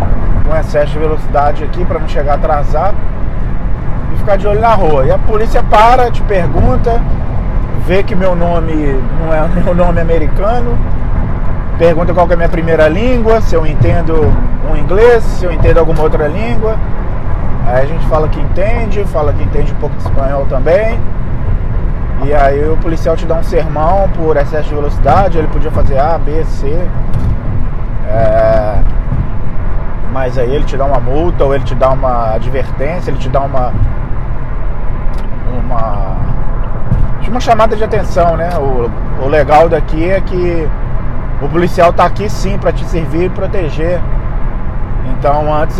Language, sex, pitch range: Portuguese, male, 115-160 Hz